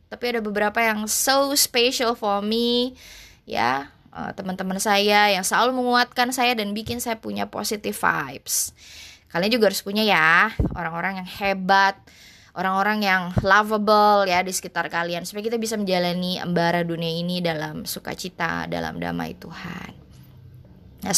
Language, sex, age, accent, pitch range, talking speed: Indonesian, female, 20-39, native, 170-225 Hz, 140 wpm